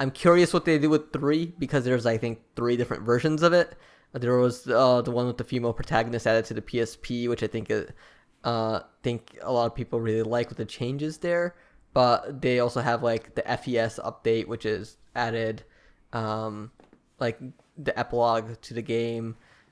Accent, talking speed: American, 190 wpm